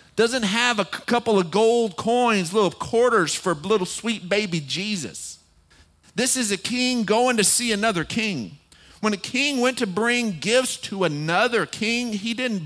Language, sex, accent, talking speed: English, male, American, 165 wpm